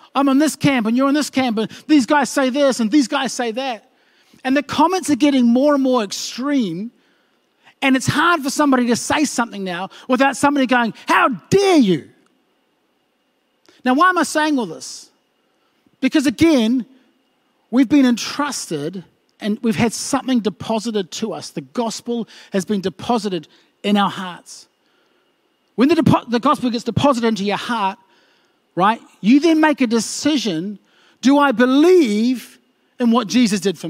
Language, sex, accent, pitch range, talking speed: English, male, Australian, 230-285 Hz, 165 wpm